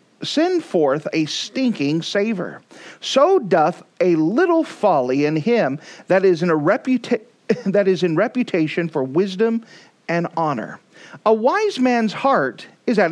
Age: 40-59